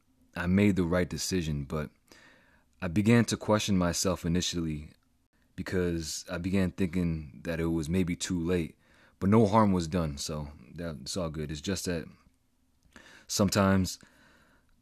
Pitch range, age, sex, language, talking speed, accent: 80-95 Hz, 30-49, male, English, 140 wpm, American